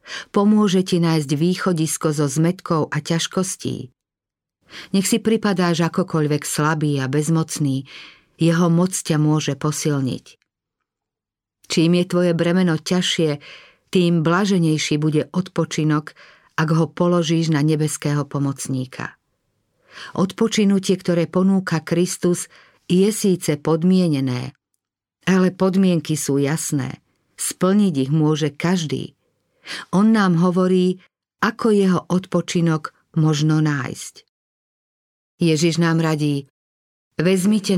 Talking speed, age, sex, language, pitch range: 100 wpm, 50-69, female, Slovak, 150-180 Hz